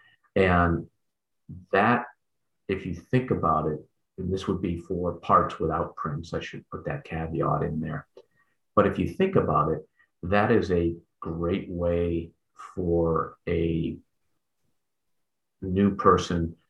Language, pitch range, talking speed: English, 80-95 Hz, 135 wpm